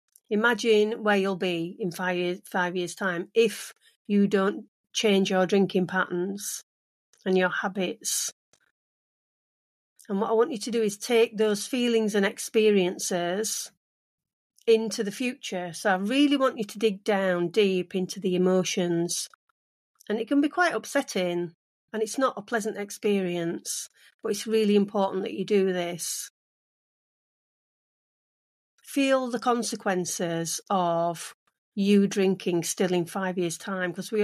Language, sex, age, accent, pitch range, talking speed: English, female, 40-59, British, 180-215 Hz, 140 wpm